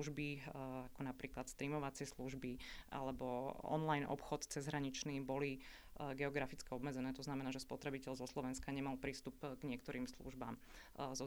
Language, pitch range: Slovak, 130-140 Hz